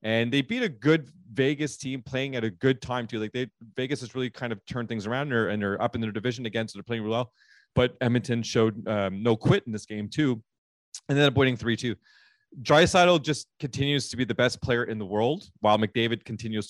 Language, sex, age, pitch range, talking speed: English, male, 30-49, 110-135 Hz, 235 wpm